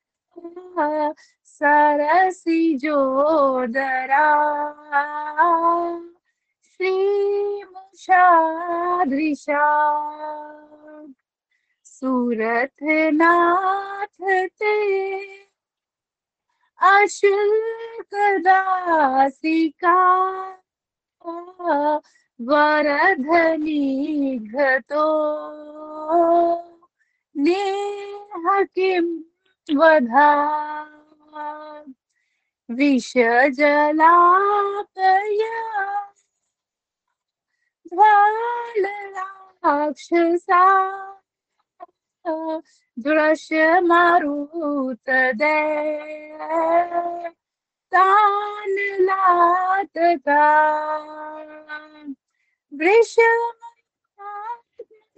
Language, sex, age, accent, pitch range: Hindi, female, 20-39, native, 300-390 Hz